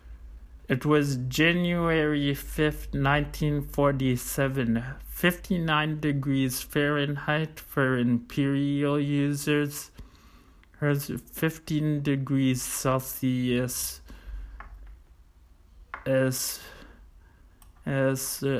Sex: male